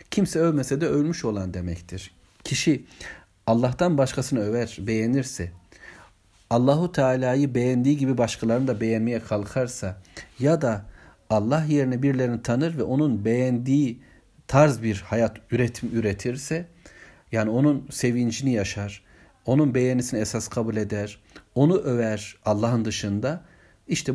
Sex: male